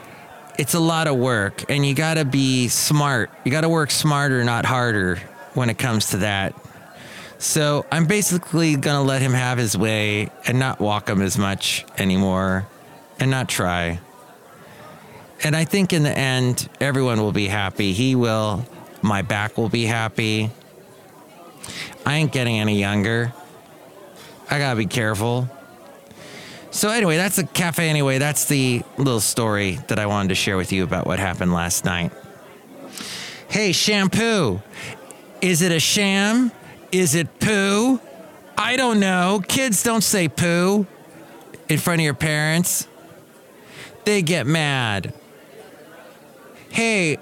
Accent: American